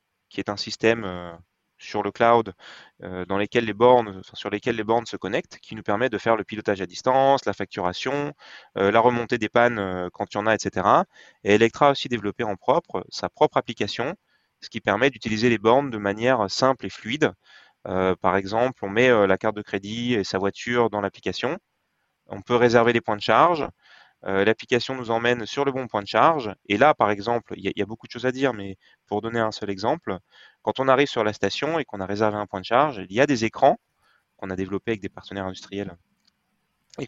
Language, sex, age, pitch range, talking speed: French, male, 20-39, 100-125 Hz, 225 wpm